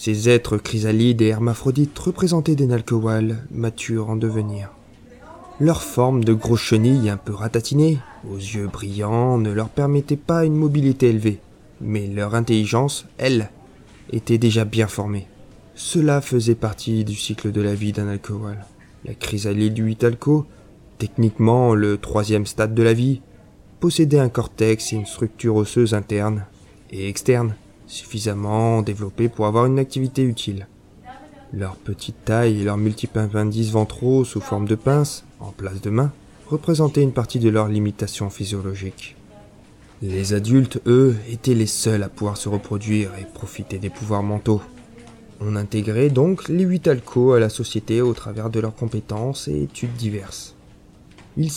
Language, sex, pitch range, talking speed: French, male, 105-125 Hz, 150 wpm